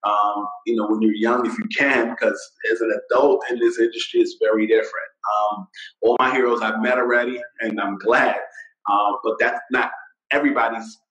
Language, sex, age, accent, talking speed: English, male, 30-49, American, 190 wpm